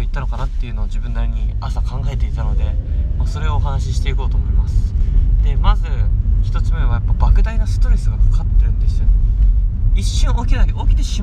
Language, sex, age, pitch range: Japanese, male, 20-39, 90-100 Hz